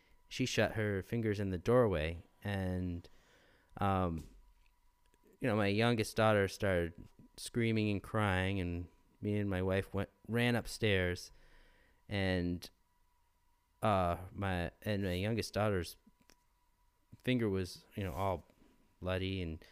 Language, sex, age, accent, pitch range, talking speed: English, male, 30-49, American, 90-110 Hz, 120 wpm